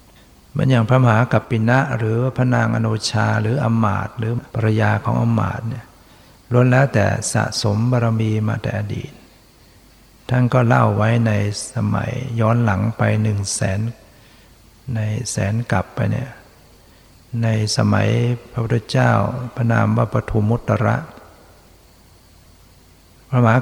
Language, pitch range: Thai, 105-120 Hz